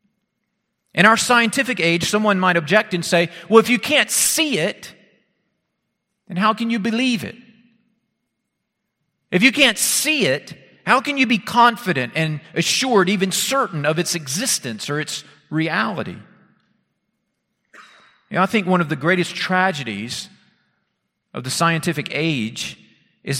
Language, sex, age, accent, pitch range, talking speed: English, male, 40-59, American, 145-205 Hz, 135 wpm